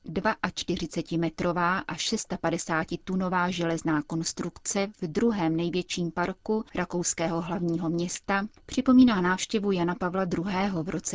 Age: 30-49